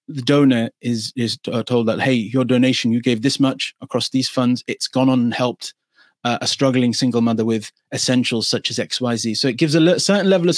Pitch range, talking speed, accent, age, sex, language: 120-140 Hz, 225 wpm, British, 30-49, male, English